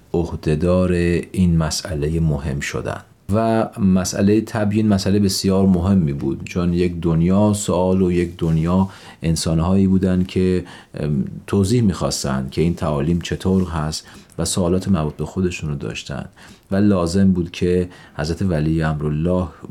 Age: 40-59